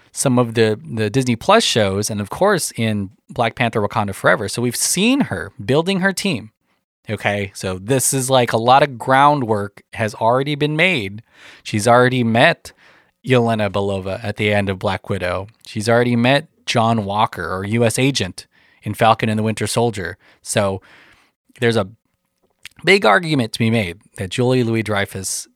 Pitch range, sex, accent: 100-135 Hz, male, American